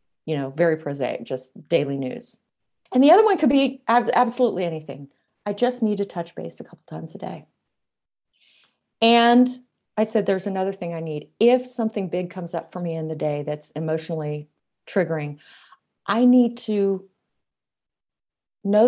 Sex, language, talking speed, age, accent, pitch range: female, English, 165 wpm, 40-59, American, 155-230 Hz